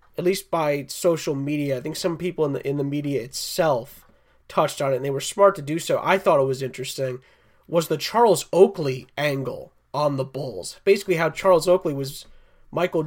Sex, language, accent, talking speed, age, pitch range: male, English, American, 200 wpm, 30-49, 145-175 Hz